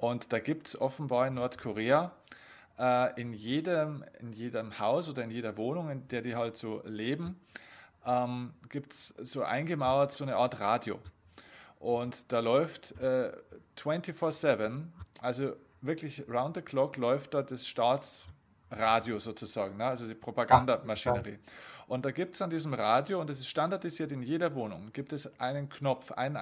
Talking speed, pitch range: 160 wpm, 120-150 Hz